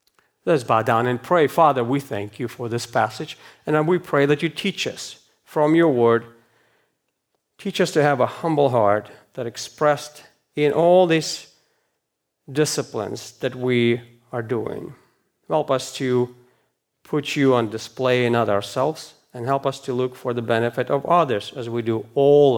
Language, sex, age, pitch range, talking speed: English, male, 40-59, 120-150 Hz, 165 wpm